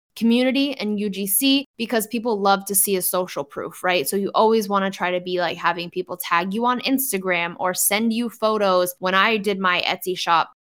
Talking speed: 210 wpm